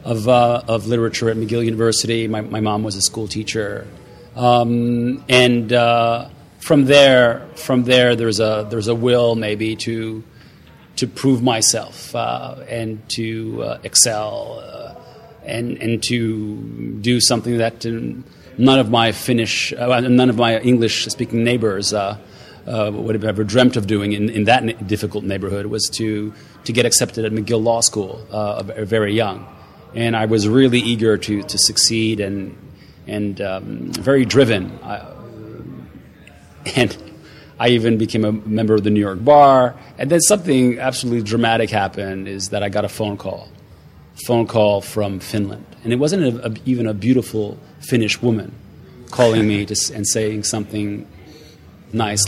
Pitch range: 105-120 Hz